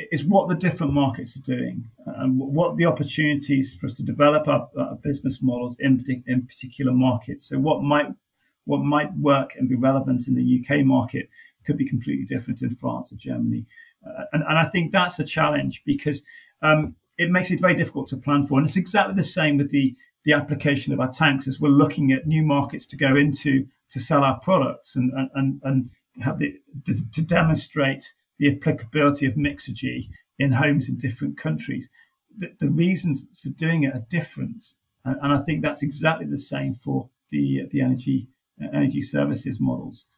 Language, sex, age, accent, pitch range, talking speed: English, male, 40-59, British, 130-155 Hz, 185 wpm